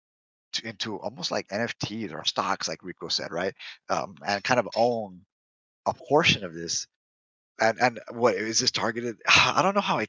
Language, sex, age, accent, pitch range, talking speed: English, male, 30-49, American, 100-130 Hz, 180 wpm